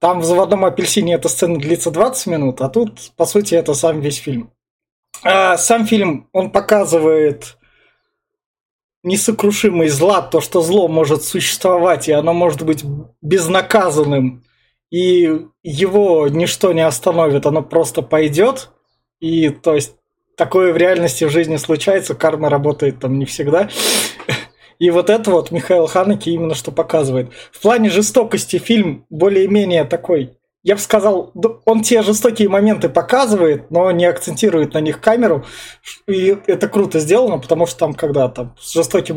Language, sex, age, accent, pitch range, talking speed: Russian, male, 20-39, native, 155-200 Hz, 145 wpm